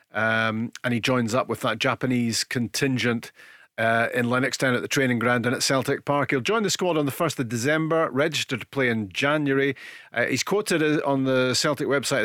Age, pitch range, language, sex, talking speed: 40-59, 115-140 Hz, English, male, 200 wpm